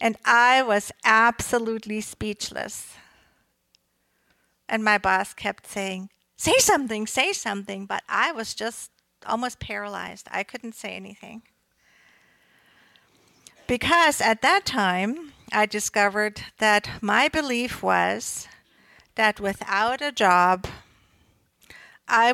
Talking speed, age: 105 wpm, 50-69